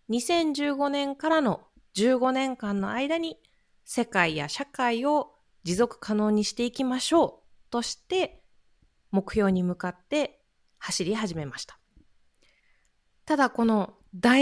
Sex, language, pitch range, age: female, Japanese, 195-265 Hz, 20-39